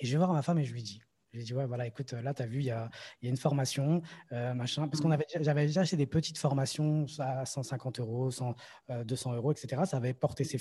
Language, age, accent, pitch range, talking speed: French, 20-39, French, 130-165 Hz, 270 wpm